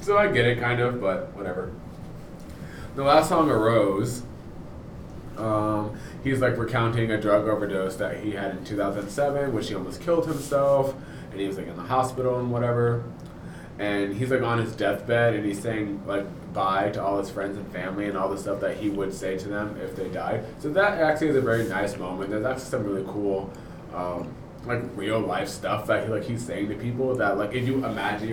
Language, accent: English, American